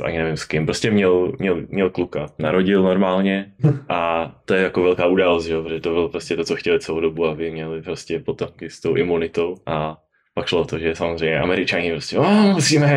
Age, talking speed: 20-39, 200 wpm